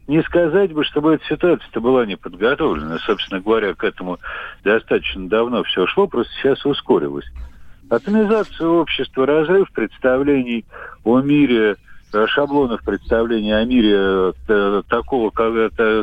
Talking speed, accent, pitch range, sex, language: 110 wpm, native, 105-165 Hz, male, Russian